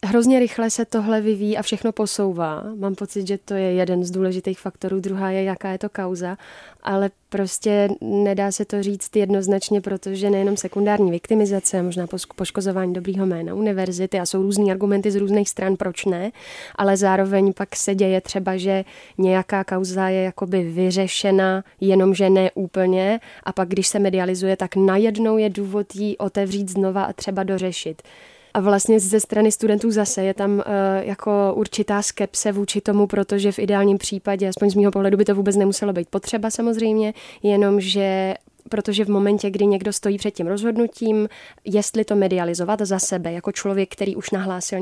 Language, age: Czech, 20-39